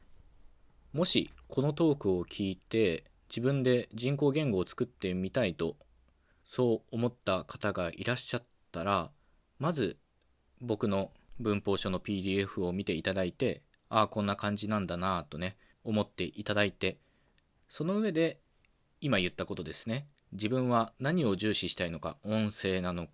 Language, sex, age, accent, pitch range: Japanese, male, 20-39, native, 90-125 Hz